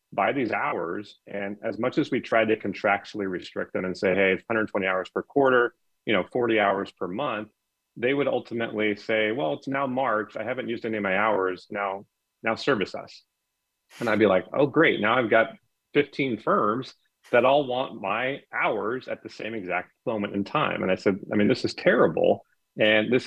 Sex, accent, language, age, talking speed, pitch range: male, American, English, 30-49, 205 wpm, 95-115 Hz